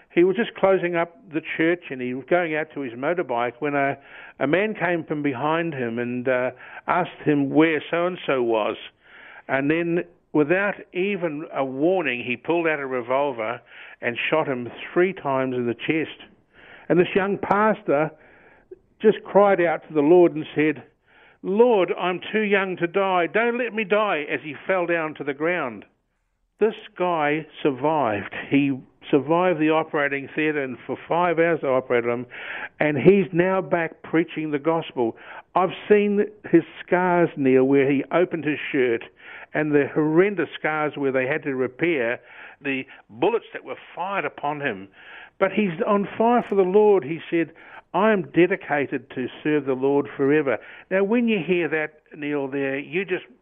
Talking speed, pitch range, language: 170 wpm, 140-180 Hz, English